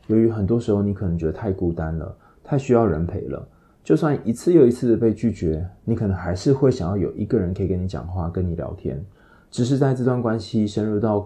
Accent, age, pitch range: native, 20-39, 90-120 Hz